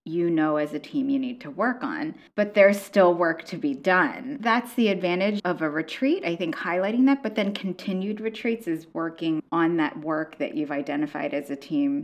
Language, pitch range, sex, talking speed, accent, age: English, 165-275 Hz, female, 210 wpm, American, 20-39